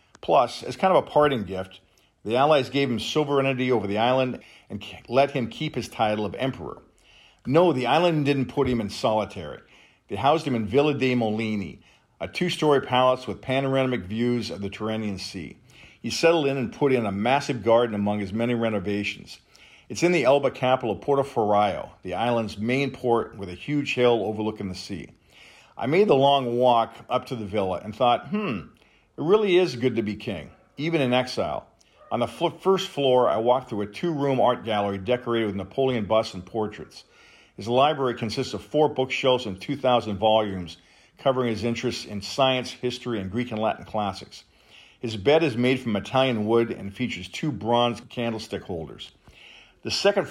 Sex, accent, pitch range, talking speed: male, American, 105-135 Hz, 185 wpm